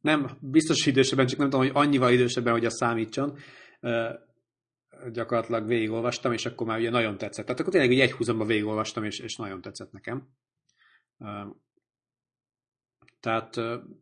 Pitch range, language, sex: 110-130 Hz, Hungarian, male